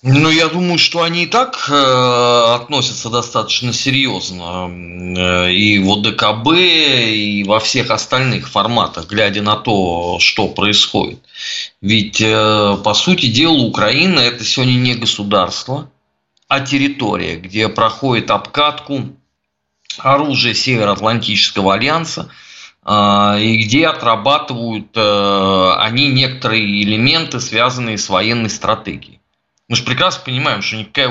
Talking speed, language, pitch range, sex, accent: 110 wpm, Russian, 105-140 Hz, male, native